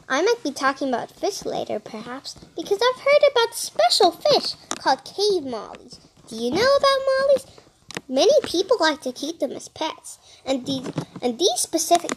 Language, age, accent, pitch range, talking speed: English, 10-29, American, 280-390 Hz, 170 wpm